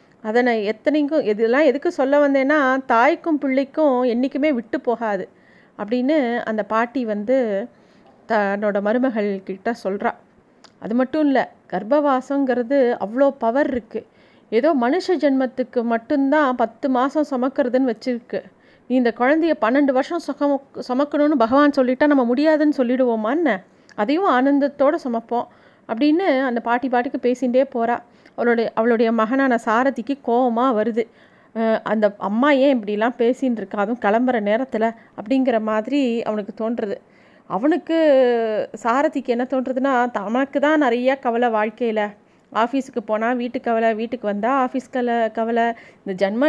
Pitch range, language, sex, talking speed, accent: 230-275 Hz, Tamil, female, 120 wpm, native